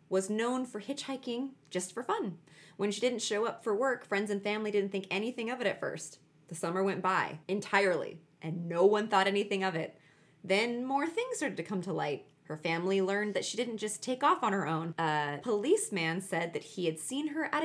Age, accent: 20-39, American